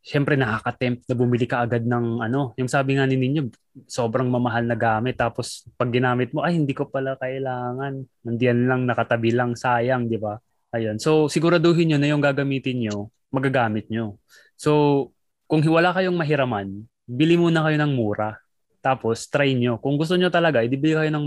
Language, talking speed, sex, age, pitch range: Filipino, 170 wpm, male, 20-39, 115-145 Hz